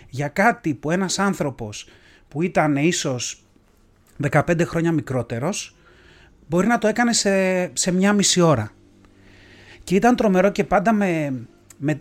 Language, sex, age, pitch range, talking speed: Greek, male, 30-49, 130-180 Hz, 135 wpm